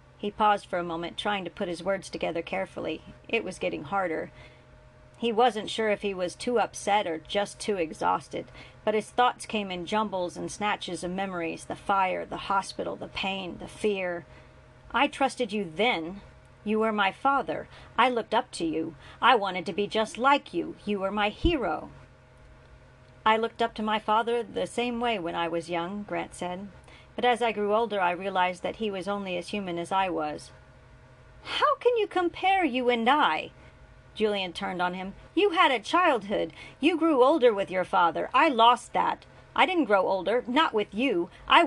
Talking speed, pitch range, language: 190 wpm, 185-280 Hz, English